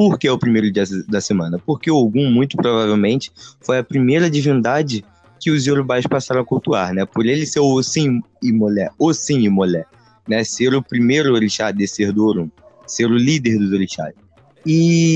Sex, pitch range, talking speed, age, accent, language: male, 105-140 Hz, 185 wpm, 20-39, Brazilian, Portuguese